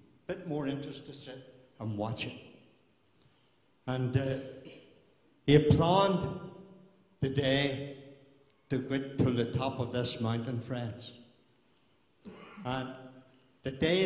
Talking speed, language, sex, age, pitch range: 110 wpm, English, male, 60-79, 130-170 Hz